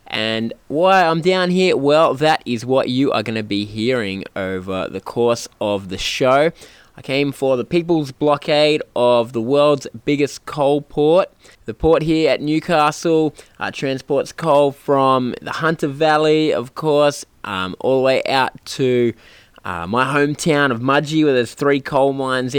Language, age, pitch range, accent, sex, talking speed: English, 20-39, 115-145 Hz, Australian, male, 165 wpm